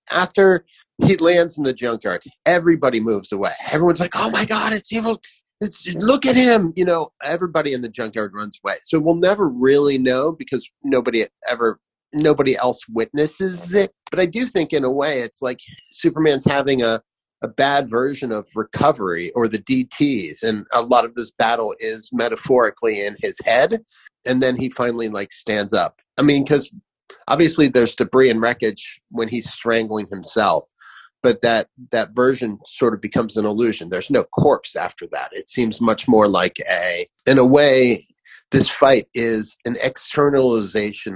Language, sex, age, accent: English, male, 30-49, American